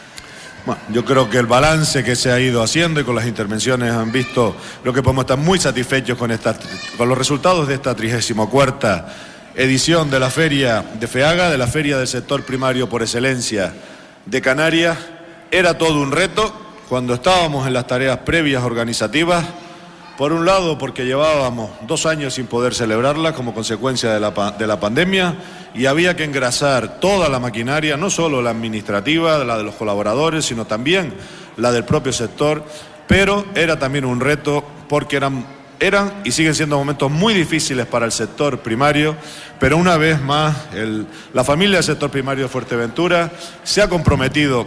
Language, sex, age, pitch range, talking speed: Spanish, male, 50-69, 125-155 Hz, 170 wpm